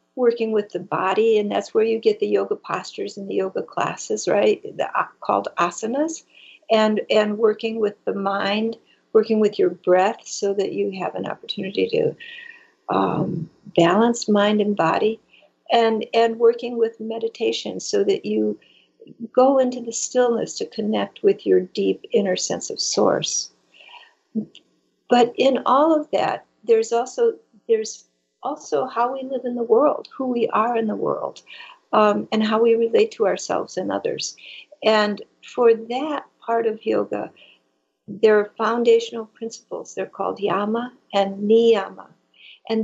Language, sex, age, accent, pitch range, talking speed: English, female, 60-79, American, 210-285 Hz, 155 wpm